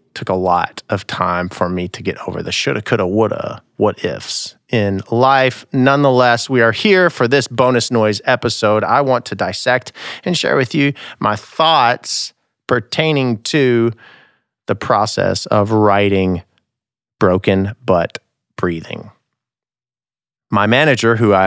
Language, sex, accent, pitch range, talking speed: English, male, American, 105-130 Hz, 140 wpm